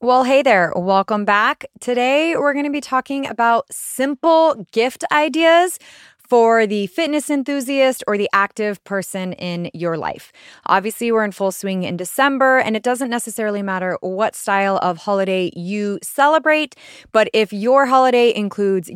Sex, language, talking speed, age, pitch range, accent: female, English, 155 wpm, 20-39, 195-275 Hz, American